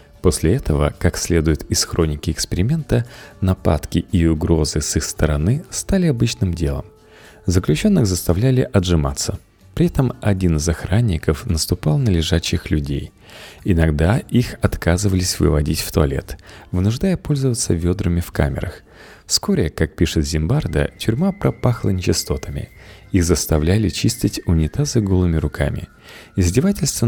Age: 30-49